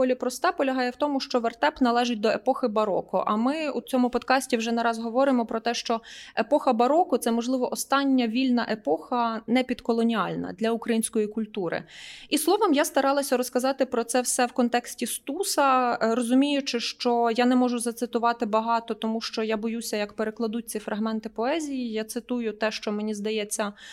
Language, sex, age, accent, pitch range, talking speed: Ukrainian, female, 20-39, native, 230-275 Hz, 170 wpm